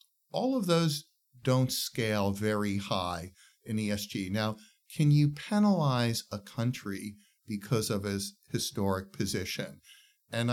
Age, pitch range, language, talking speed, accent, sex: 50-69, 100-135 Hz, English, 120 wpm, American, male